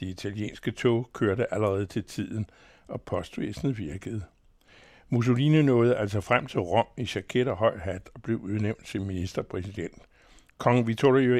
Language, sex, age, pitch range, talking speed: Danish, male, 60-79, 100-125 Hz, 145 wpm